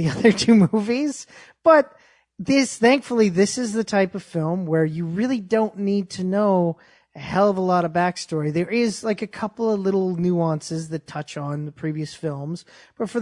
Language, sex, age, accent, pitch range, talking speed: English, male, 30-49, American, 165-215 Hz, 195 wpm